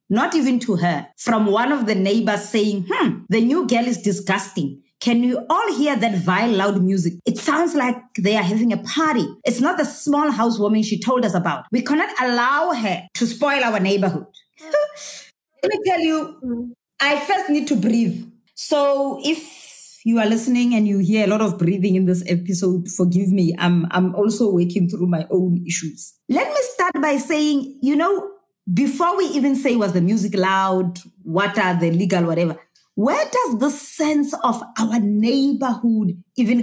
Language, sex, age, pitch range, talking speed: English, female, 30-49, 200-285 Hz, 180 wpm